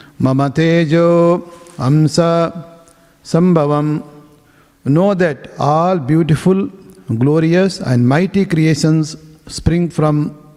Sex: male